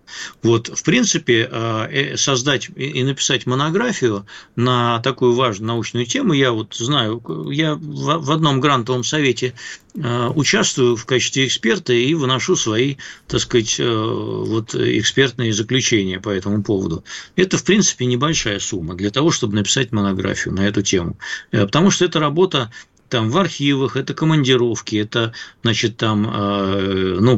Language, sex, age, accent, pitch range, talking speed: Russian, male, 50-69, native, 110-145 Hz, 135 wpm